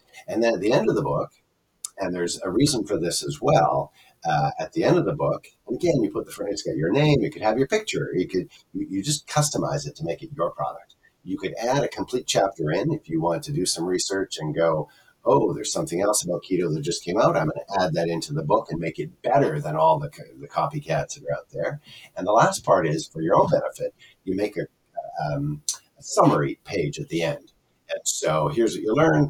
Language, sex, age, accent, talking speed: English, male, 50-69, American, 245 wpm